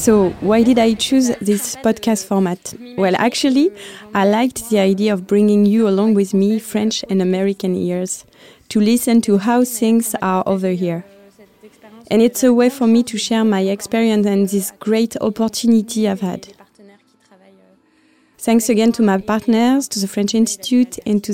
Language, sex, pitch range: English, female, 205-240 Hz